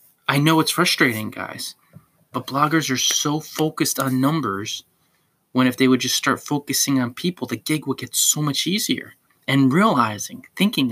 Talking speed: 170 wpm